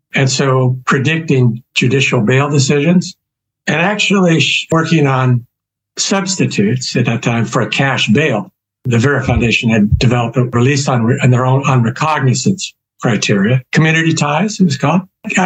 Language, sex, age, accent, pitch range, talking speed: English, male, 60-79, American, 120-150 Hz, 140 wpm